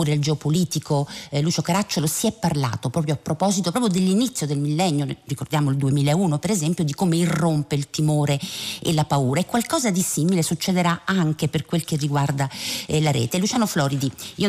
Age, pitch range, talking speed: 50-69, 145-180 Hz, 180 wpm